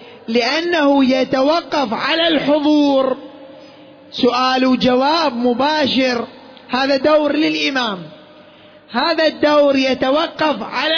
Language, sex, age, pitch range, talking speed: Arabic, male, 30-49, 250-295 Hz, 75 wpm